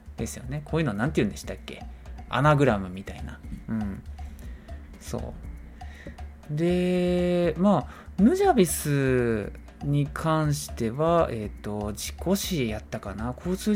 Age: 20-39